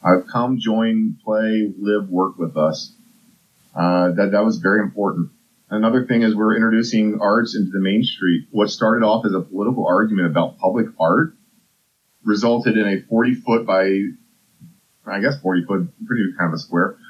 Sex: male